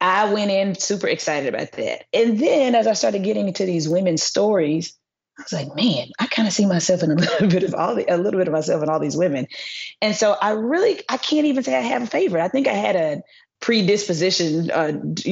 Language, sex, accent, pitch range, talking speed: English, female, American, 160-200 Hz, 240 wpm